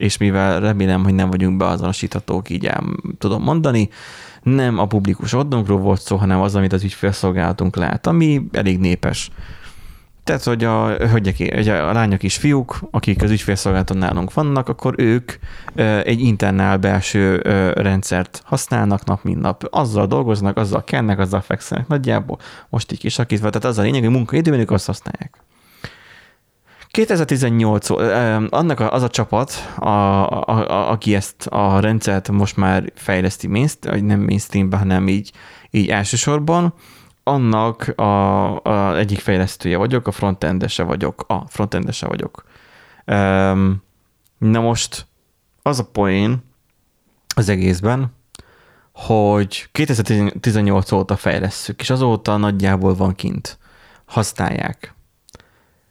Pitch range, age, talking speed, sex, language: 95-115 Hz, 20-39, 130 wpm, male, Hungarian